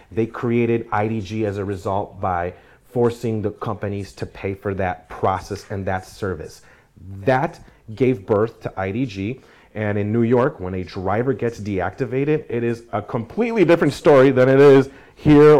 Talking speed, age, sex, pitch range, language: 160 wpm, 30-49, male, 100-125 Hz, English